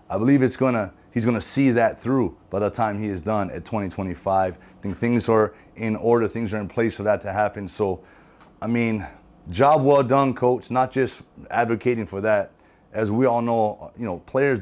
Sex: male